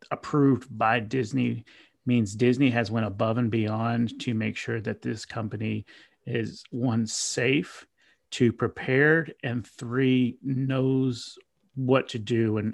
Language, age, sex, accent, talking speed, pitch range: English, 30-49, male, American, 130 wpm, 110-125 Hz